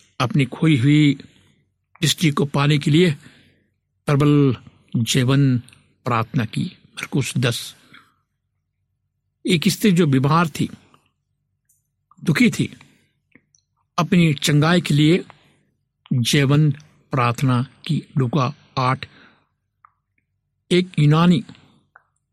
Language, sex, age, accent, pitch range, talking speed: Hindi, male, 60-79, native, 120-160 Hz, 85 wpm